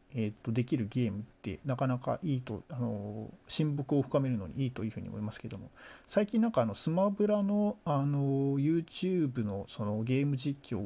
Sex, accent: male, native